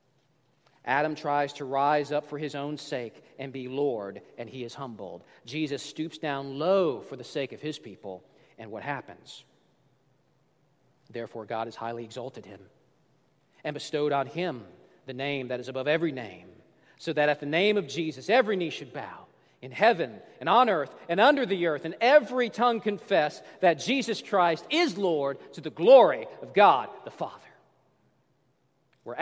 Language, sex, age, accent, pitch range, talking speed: English, male, 40-59, American, 135-180 Hz, 170 wpm